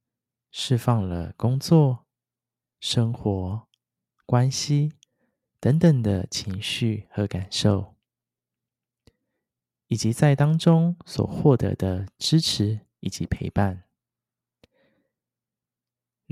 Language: Chinese